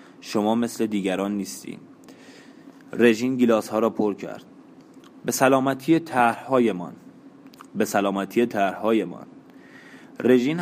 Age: 20-39